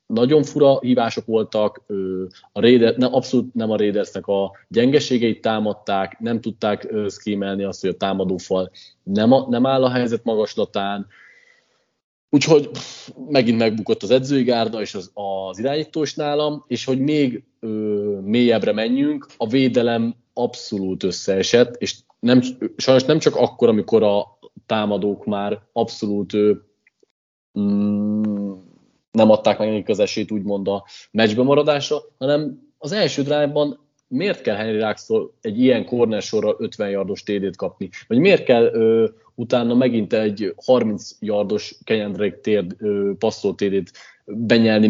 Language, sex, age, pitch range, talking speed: Hungarian, male, 30-49, 105-130 Hz, 135 wpm